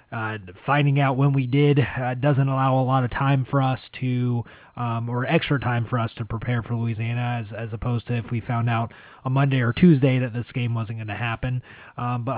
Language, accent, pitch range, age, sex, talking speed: English, American, 115-140 Hz, 20-39, male, 225 wpm